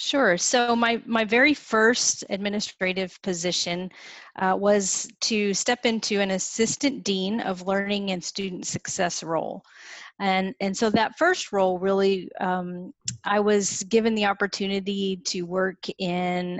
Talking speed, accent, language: 135 wpm, American, English